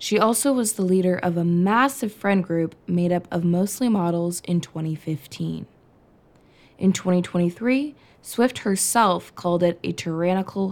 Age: 20-39